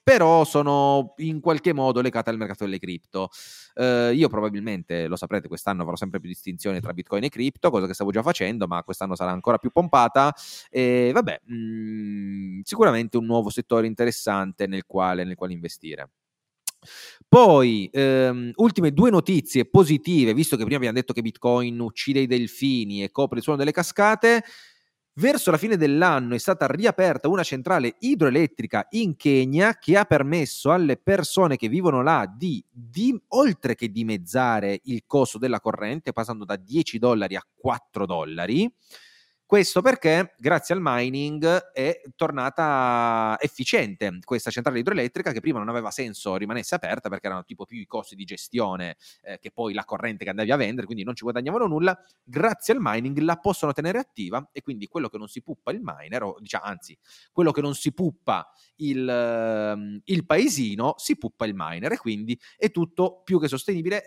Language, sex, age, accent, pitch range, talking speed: Italian, male, 30-49, native, 110-165 Hz, 175 wpm